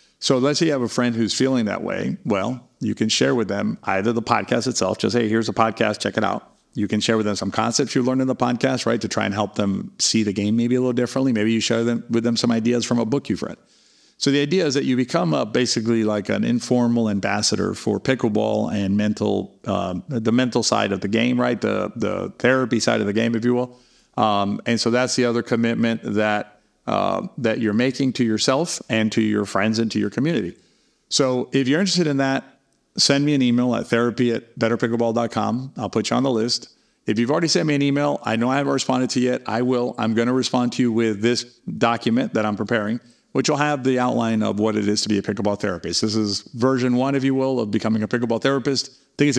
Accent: American